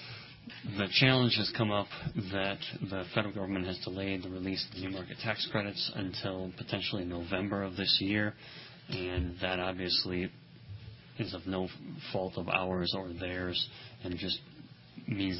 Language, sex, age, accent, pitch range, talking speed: English, male, 30-49, American, 95-110 Hz, 150 wpm